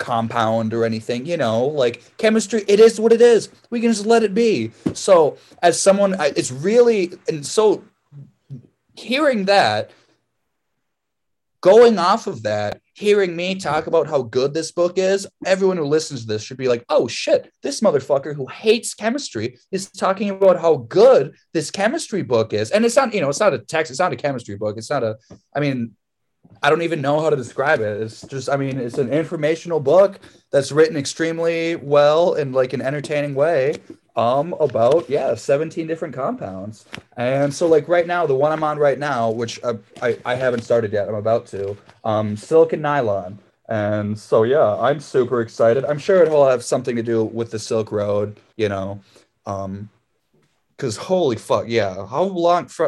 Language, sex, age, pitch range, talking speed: English, male, 20-39, 115-185 Hz, 190 wpm